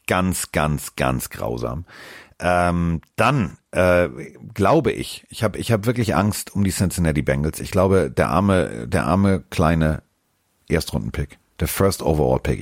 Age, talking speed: 40-59, 140 wpm